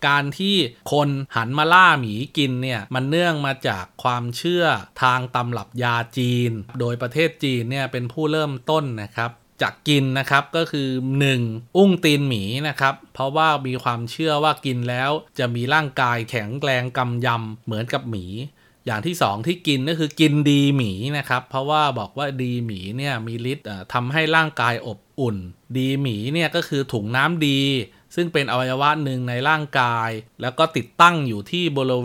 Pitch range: 120-150 Hz